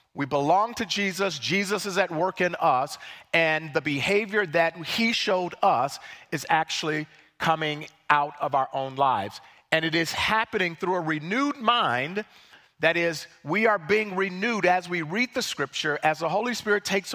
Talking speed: 170 wpm